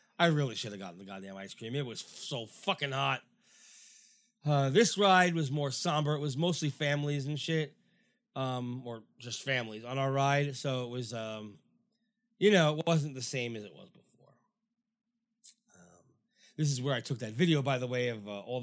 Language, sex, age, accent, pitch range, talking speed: English, male, 30-49, American, 130-190 Hz, 195 wpm